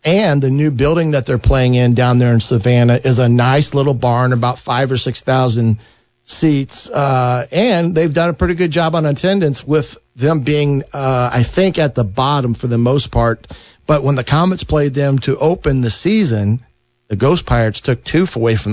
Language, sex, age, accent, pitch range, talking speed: English, male, 50-69, American, 120-150 Hz, 200 wpm